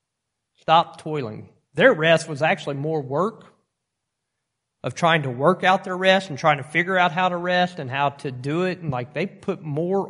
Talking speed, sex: 195 wpm, male